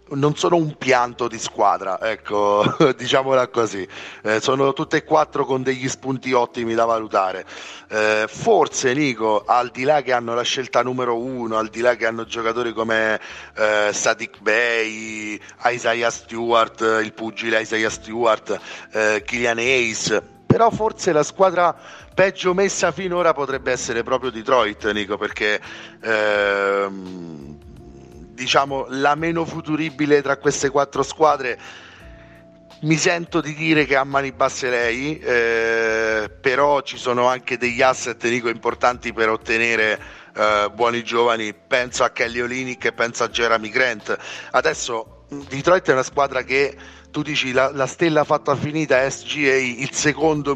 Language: Italian